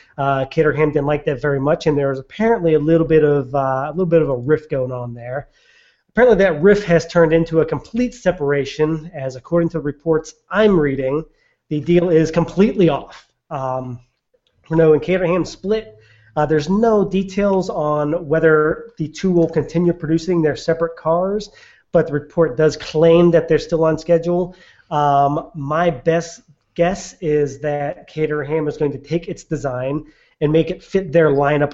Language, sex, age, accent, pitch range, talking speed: English, male, 30-49, American, 140-170 Hz, 165 wpm